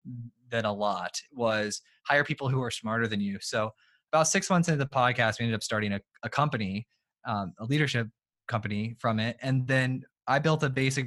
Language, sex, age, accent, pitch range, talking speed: English, male, 20-39, American, 115-145 Hz, 200 wpm